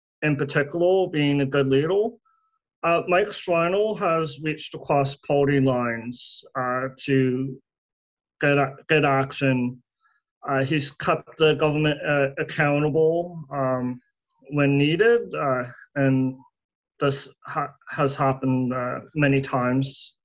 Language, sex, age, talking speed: English, male, 30-49, 110 wpm